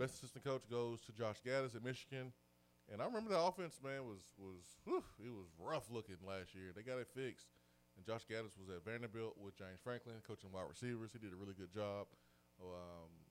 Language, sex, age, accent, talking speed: English, male, 20-39, American, 210 wpm